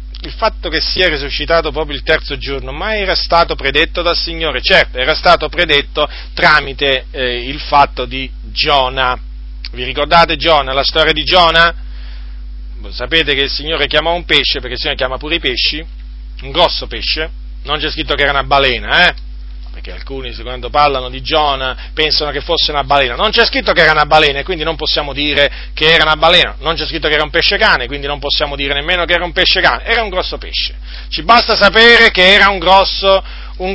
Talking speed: 205 wpm